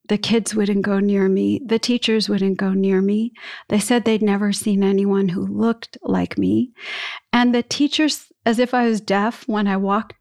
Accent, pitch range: American, 205-285 Hz